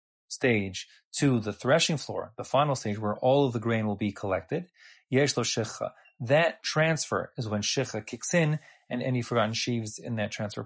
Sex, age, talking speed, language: male, 30-49, 175 wpm, English